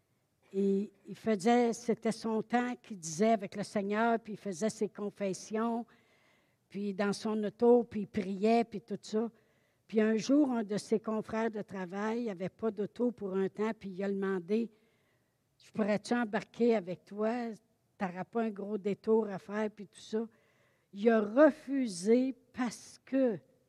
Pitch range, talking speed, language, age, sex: 185-225 Hz, 170 wpm, French, 60-79, female